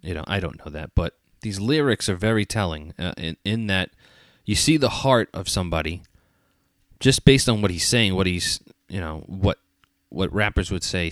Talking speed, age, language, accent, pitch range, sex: 200 wpm, 30-49, English, American, 90-110 Hz, male